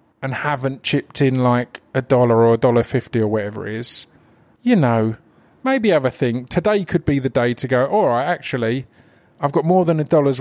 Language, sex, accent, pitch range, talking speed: English, male, British, 125-150 Hz, 215 wpm